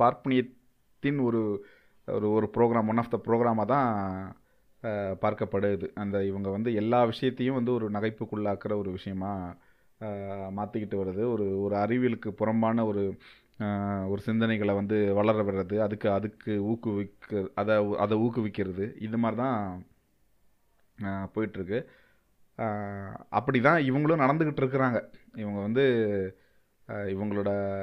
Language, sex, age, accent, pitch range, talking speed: Tamil, male, 30-49, native, 105-125 Hz, 105 wpm